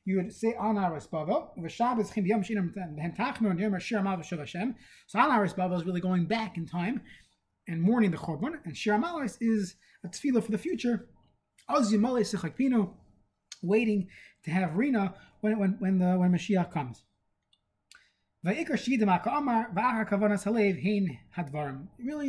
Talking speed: 100 wpm